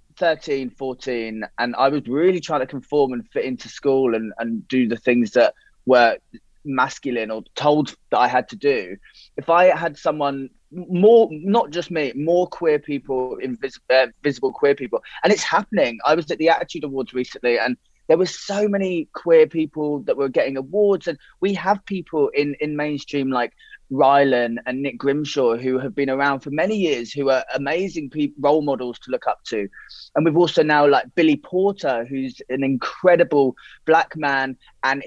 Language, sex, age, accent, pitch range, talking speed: English, male, 20-39, British, 130-165 Hz, 180 wpm